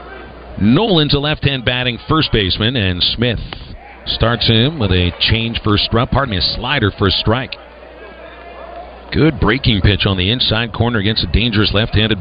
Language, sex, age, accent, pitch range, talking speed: English, male, 50-69, American, 105-135 Hz, 160 wpm